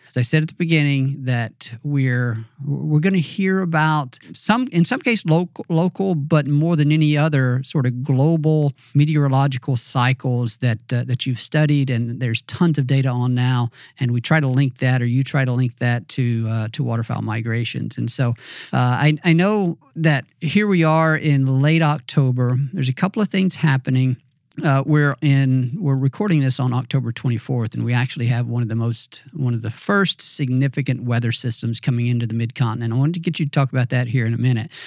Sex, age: male, 50-69